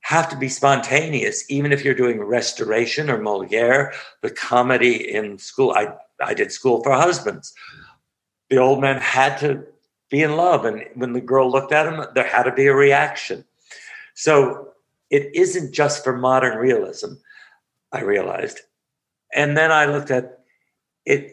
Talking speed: 160 wpm